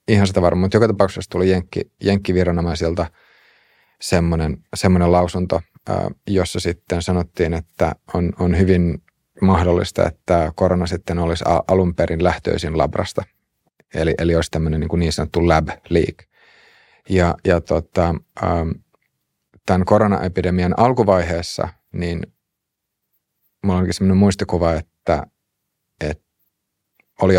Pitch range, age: 85-95 Hz, 30-49